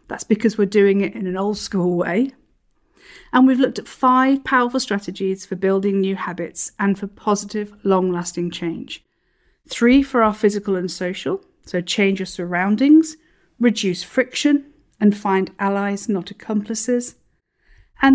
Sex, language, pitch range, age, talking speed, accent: female, English, 190-255 Hz, 50-69, 145 wpm, British